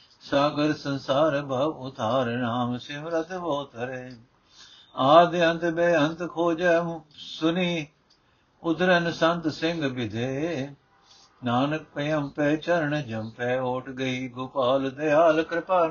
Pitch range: 130-160 Hz